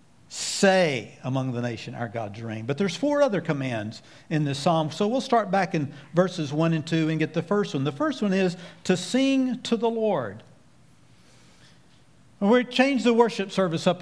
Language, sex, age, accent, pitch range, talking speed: English, male, 50-69, American, 155-225 Hz, 190 wpm